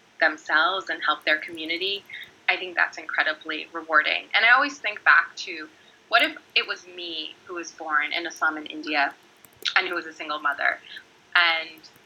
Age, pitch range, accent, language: 20-39, 155-200 Hz, American, English